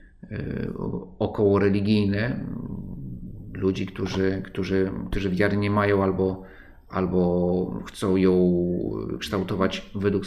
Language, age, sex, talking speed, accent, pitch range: Polish, 40-59, male, 90 wpm, native, 95-105 Hz